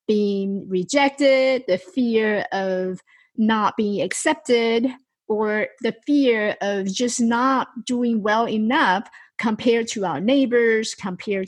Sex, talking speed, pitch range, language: female, 115 wpm, 215-265 Hz, English